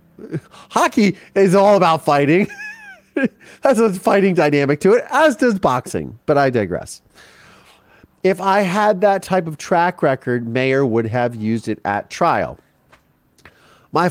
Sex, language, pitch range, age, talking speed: male, English, 110-155 Hz, 30-49, 140 wpm